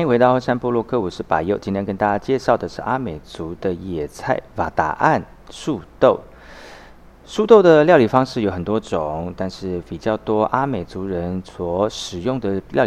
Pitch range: 90-120 Hz